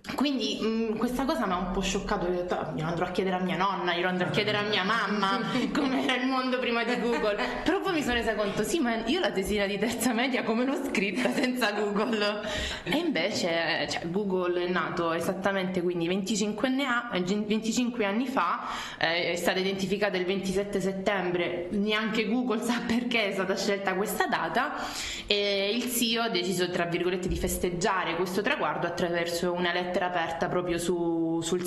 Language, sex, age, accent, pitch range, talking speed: Italian, female, 20-39, native, 175-225 Hz, 170 wpm